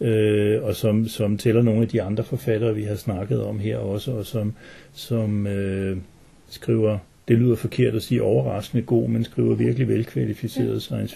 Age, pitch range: 60-79, 110-125 Hz